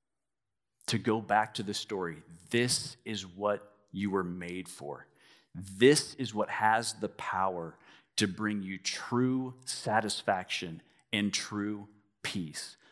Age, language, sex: 50-69, English, male